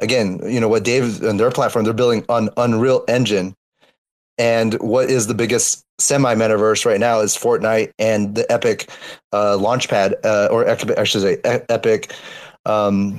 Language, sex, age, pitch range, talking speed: English, male, 30-49, 115-140 Hz, 165 wpm